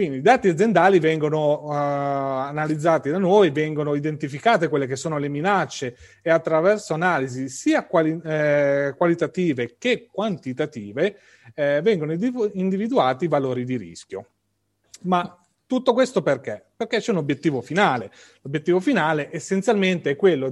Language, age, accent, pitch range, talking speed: Italian, 30-49, native, 145-195 Hz, 130 wpm